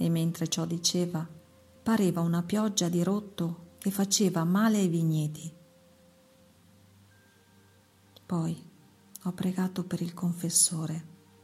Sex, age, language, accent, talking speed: female, 40-59, Italian, native, 105 wpm